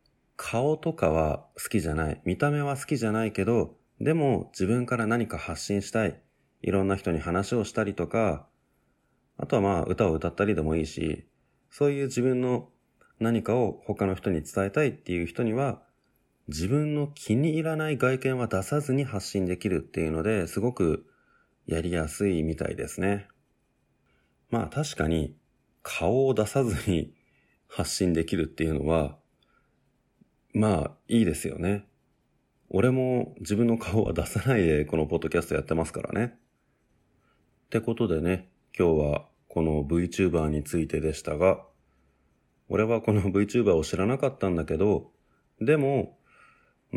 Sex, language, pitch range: male, Japanese, 80-125 Hz